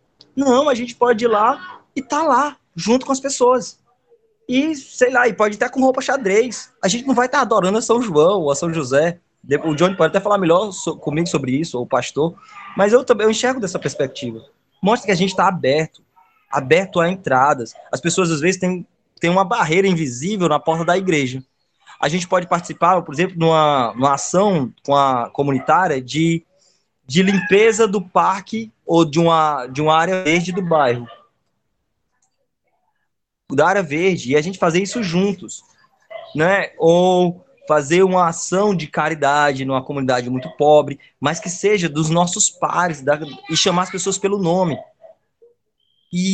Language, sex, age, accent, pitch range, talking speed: Portuguese, male, 20-39, Brazilian, 155-210 Hz, 170 wpm